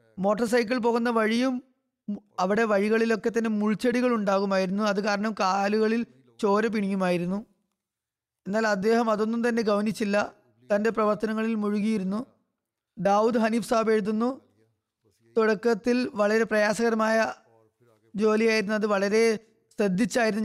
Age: 20-39